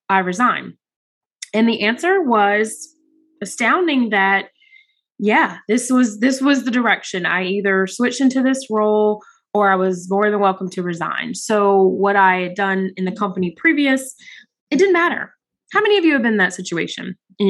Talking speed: 175 wpm